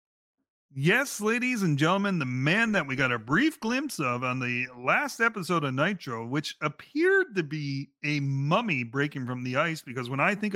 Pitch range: 125-185 Hz